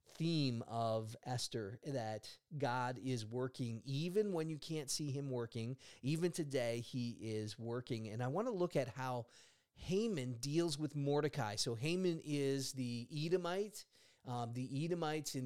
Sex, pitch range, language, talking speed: male, 125-150 Hz, English, 150 wpm